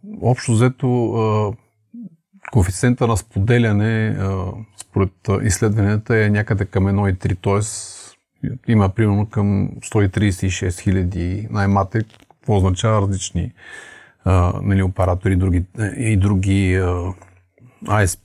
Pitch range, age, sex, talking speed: 95-115 Hz, 40-59, male, 90 wpm